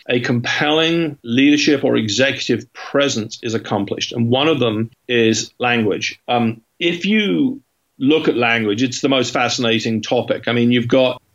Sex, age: male, 40-59